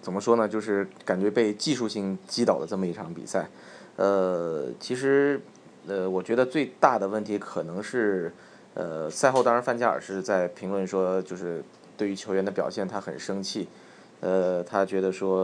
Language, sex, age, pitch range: Chinese, male, 20-39, 95-105 Hz